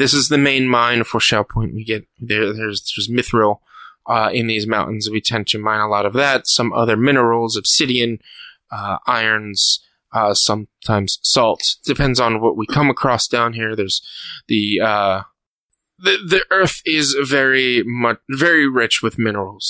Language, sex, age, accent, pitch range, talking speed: English, male, 20-39, American, 110-135 Hz, 170 wpm